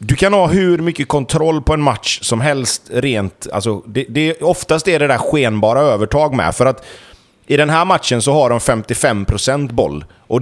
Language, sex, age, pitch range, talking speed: Swedish, male, 30-49, 125-165 Hz, 195 wpm